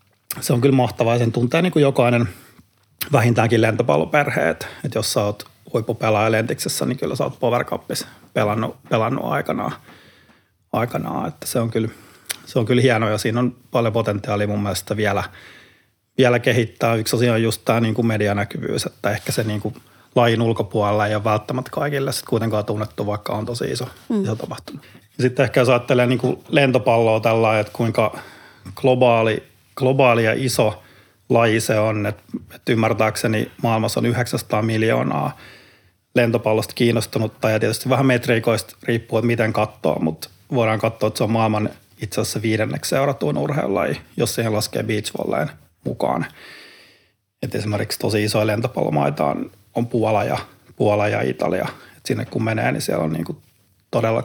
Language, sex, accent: Finnish, male, native